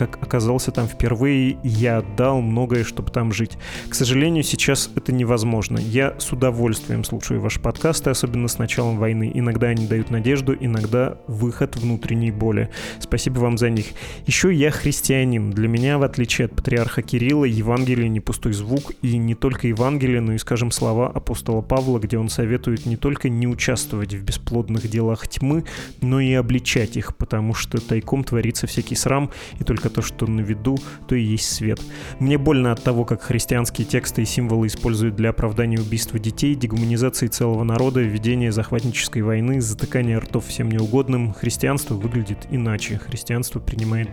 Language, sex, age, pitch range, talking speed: Russian, male, 20-39, 115-130 Hz, 165 wpm